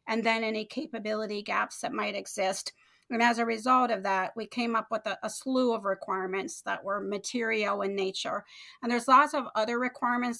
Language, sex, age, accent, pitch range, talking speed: English, female, 40-59, American, 205-230 Hz, 195 wpm